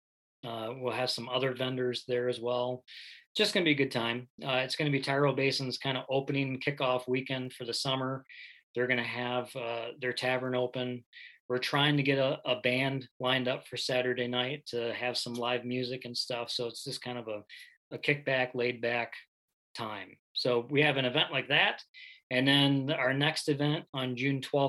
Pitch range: 120-140 Hz